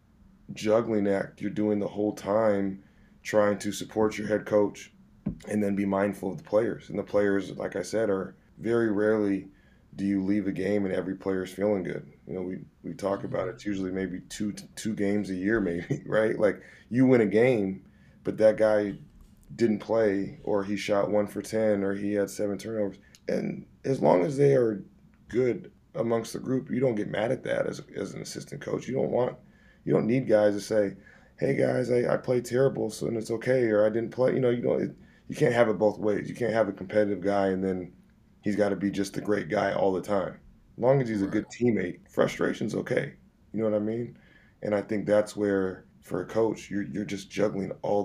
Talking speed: 225 wpm